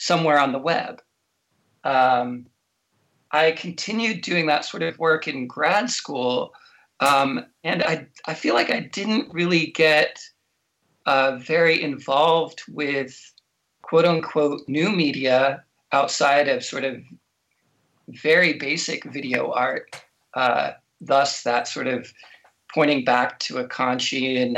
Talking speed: 125 wpm